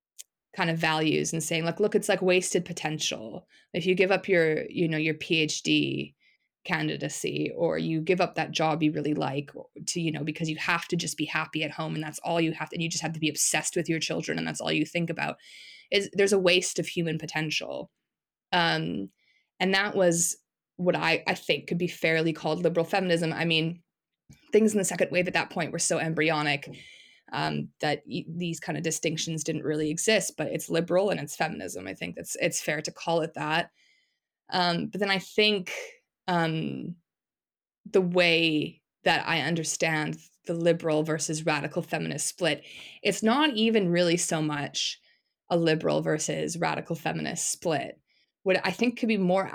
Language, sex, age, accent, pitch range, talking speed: English, female, 20-39, American, 155-180 Hz, 195 wpm